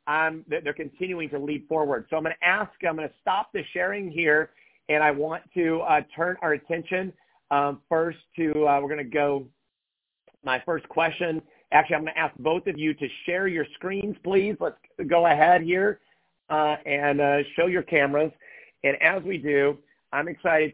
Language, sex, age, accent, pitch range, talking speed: English, male, 50-69, American, 150-180 Hz, 190 wpm